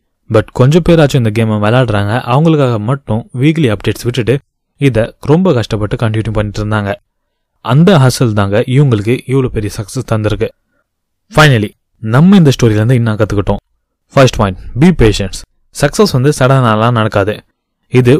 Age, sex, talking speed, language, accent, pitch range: 20-39, male, 105 wpm, Tamil, native, 110-140 Hz